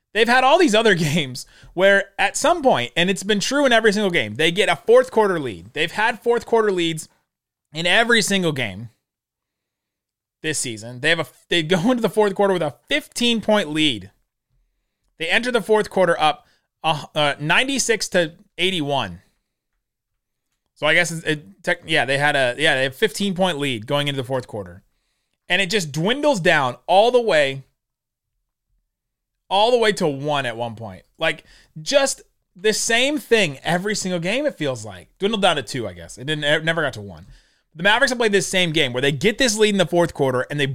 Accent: American